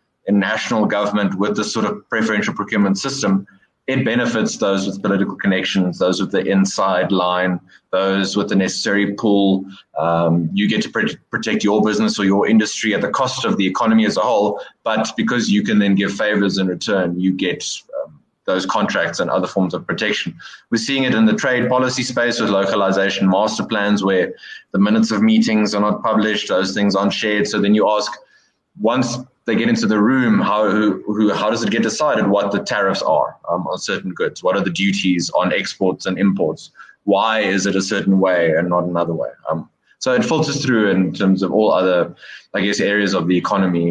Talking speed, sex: 205 wpm, male